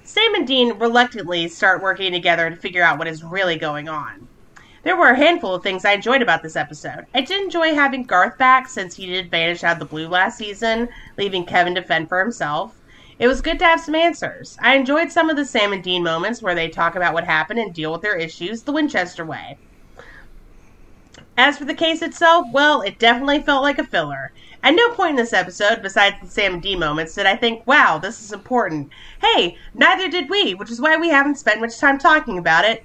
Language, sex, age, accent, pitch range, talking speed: English, female, 30-49, American, 175-280 Hz, 225 wpm